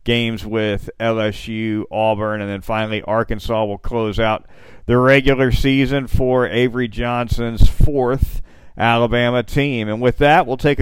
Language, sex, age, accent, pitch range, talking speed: English, male, 50-69, American, 115-140 Hz, 140 wpm